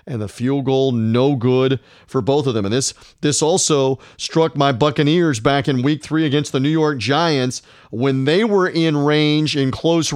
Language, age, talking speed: English, 40-59, 195 wpm